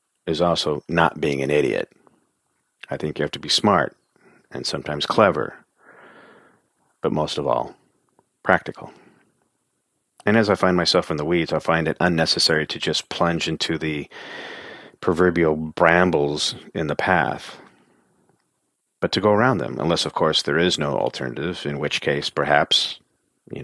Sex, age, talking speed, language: male, 40-59, 150 wpm, English